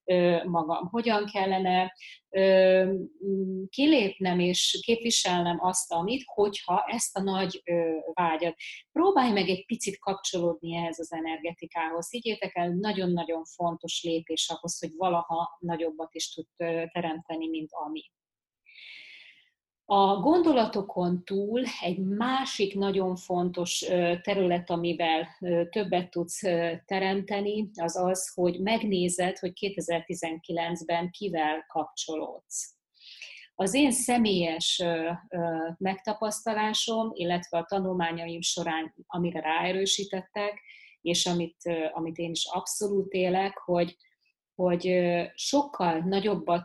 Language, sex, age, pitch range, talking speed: Hungarian, female, 30-49, 170-195 Hz, 100 wpm